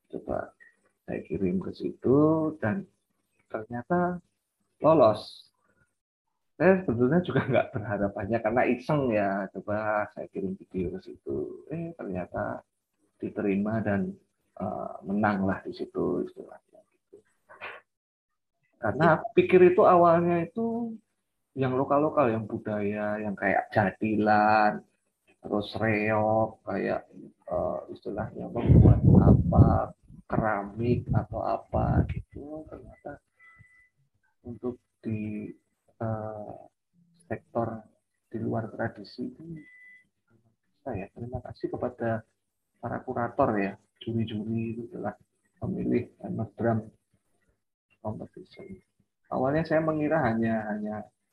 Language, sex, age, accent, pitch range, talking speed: Indonesian, male, 30-49, native, 105-160 Hz, 95 wpm